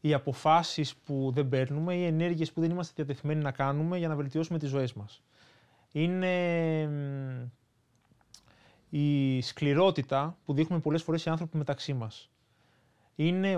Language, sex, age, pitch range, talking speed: Greek, male, 20-39, 135-180 Hz, 135 wpm